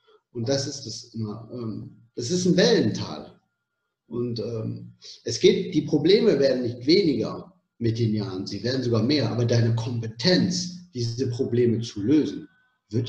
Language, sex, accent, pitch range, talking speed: German, male, German, 115-155 Hz, 150 wpm